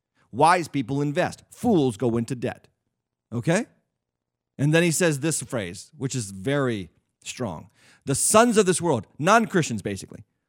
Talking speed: 145 wpm